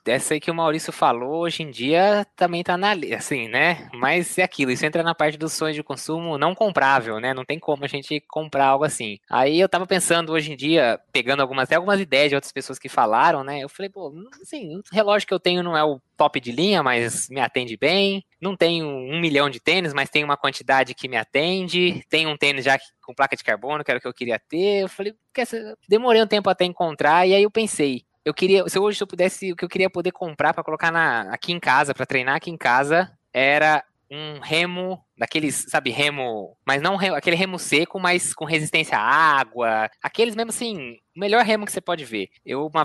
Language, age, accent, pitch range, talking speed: Portuguese, 20-39, Brazilian, 135-180 Hz, 230 wpm